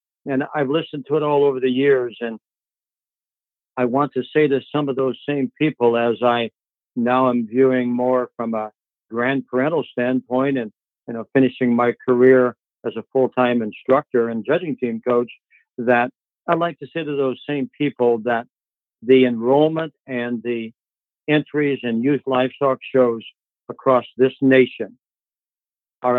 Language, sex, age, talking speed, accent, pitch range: English, male, 60-79, 155 wpm, American, 120-140 Hz